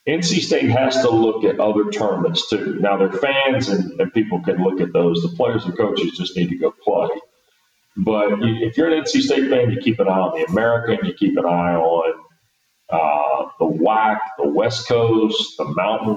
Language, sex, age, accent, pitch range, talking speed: English, male, 40-59, American, 100-130 Hz, 205 wpm